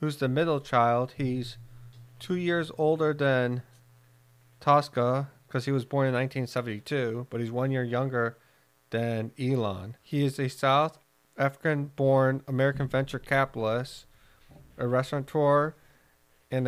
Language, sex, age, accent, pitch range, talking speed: English, male, 40-59, American, 115-135 Hz, 120 wpm